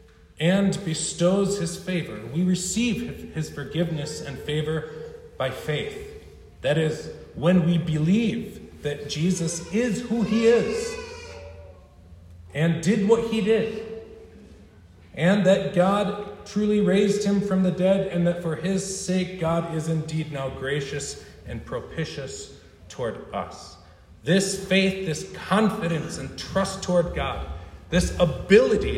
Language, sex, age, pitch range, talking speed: English, male, 40-59, 135-190 Hz, 125 wpm